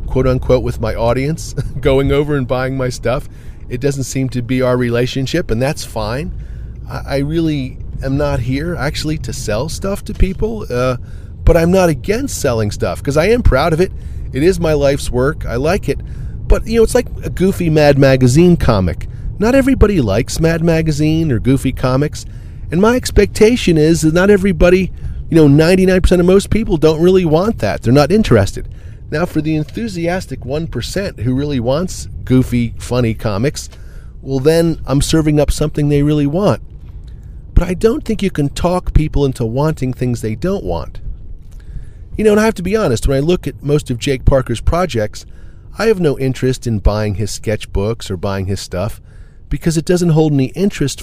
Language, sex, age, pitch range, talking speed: English, male, 40-59, 110-160 Hz, 190 wpm